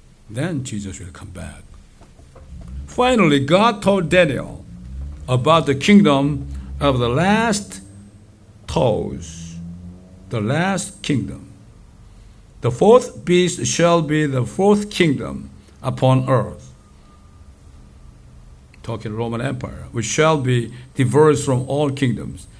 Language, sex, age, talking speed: English, male, 60-79, 105 wpm